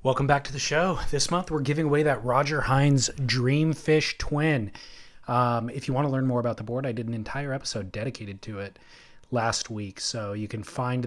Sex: male